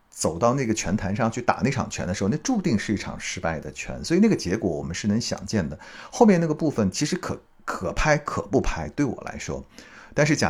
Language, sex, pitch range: Chinese, male, 90-120 Hz